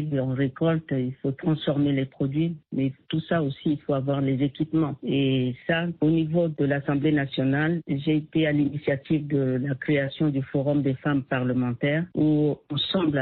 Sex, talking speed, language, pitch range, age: female, 170 wpm, French, 135-160 Hz, 50-69